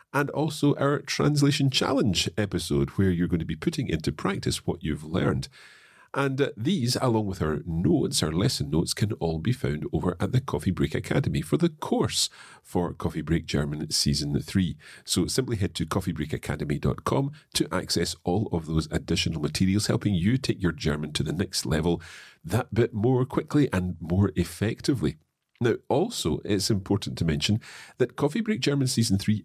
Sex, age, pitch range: male, 40-59, 85-125 Hz